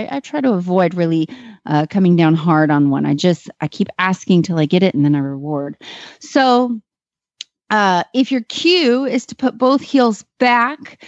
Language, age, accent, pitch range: English, 30-49, American, 170-235 Hz